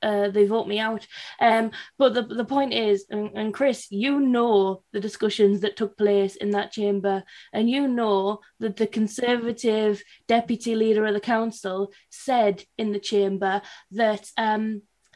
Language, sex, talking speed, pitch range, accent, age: English, female, 160 wpm, 205-240 Hz, British, 20-39